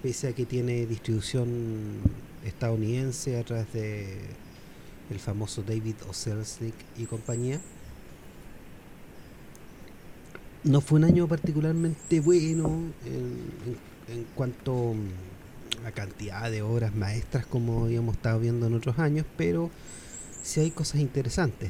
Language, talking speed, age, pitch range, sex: Spanish, 120 wpm, 30-49, 105-125 Hz, male